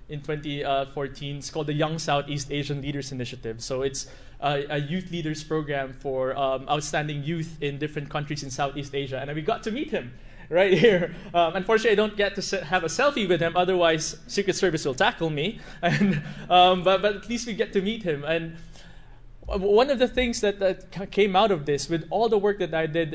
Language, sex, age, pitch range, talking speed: English, male, 20-39, 140-175 Hz, 210 wpm